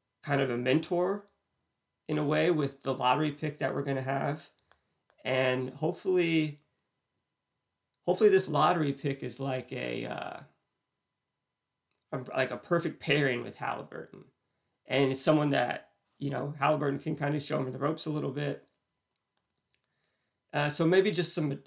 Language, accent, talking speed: English, American, 150 wpm